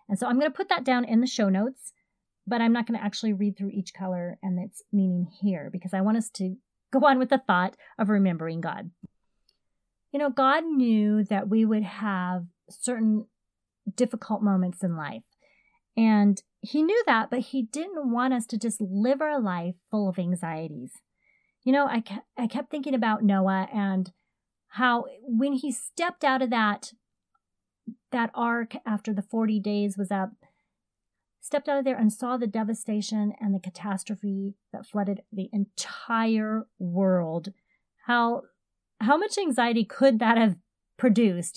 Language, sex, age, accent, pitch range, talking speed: English, female, 30-49, American, 190-245 Hz, 165 wpm